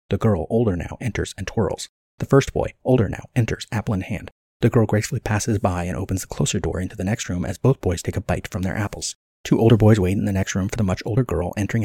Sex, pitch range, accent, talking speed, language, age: male, 90-110 Hz, American, 270 wpm, English, 30-49